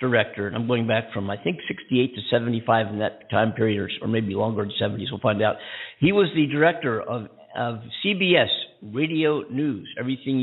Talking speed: 190 wpm